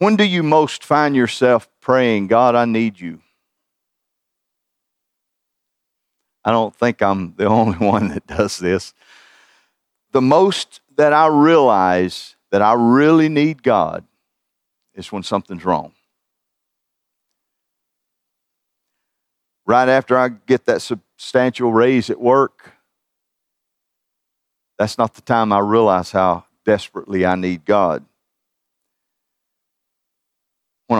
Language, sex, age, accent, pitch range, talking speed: English, male, 50-69, American, 100-125 Hz, 110 wpm